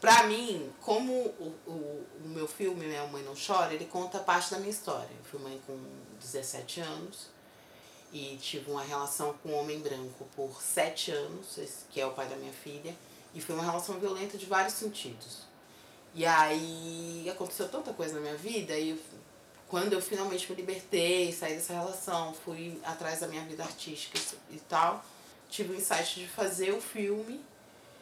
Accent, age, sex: Brazilian, 20-39, female